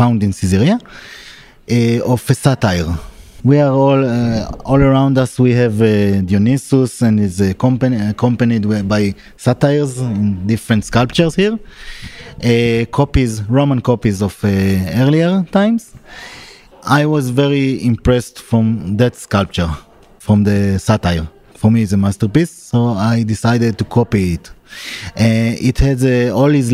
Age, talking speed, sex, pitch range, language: 30-49, 145 wpm, male, 110-130 Hz, English